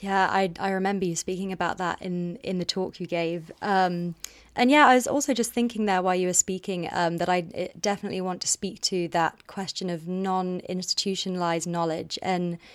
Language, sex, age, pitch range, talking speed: English, female, 20-39, 170-190 Hz, 195 wpm